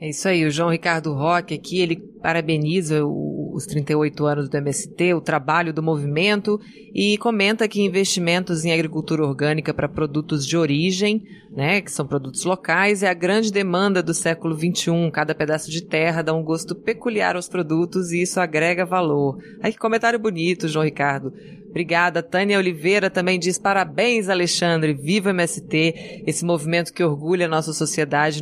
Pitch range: 160-200 Hz